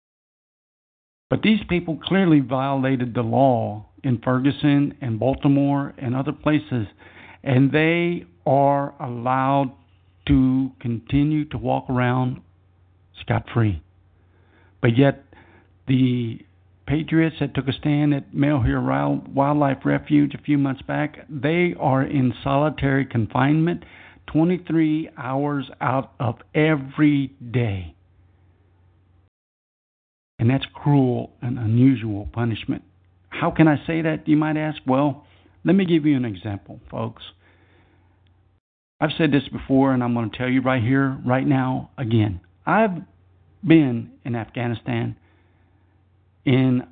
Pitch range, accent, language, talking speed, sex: 95-140 Hz, American, English, 120 wpm, male